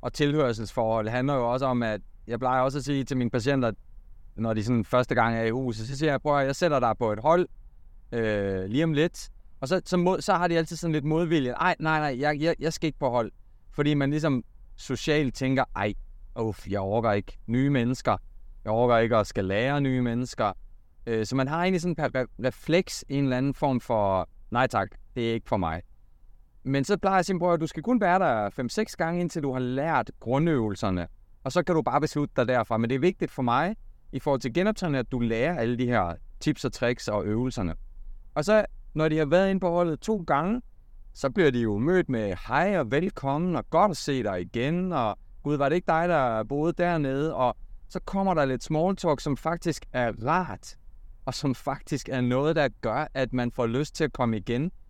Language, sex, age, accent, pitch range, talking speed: Danish, male, 20-39, native, 115-155 Hz, 230 wpm